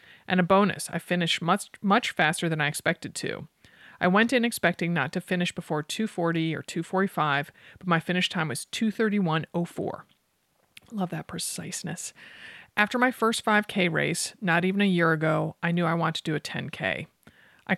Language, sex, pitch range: English, male, 160-195 Hz